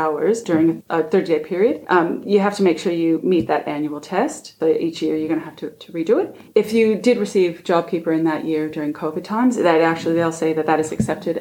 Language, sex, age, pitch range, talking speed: English, female, 20-39, 160-185 Hz, 240 wpm